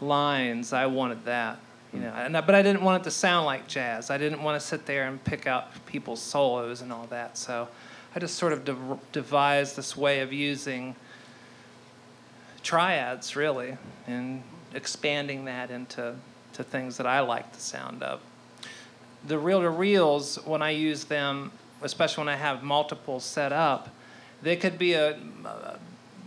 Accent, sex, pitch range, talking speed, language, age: American, male, 135-160 Hz, 175 wpm, English, 40-59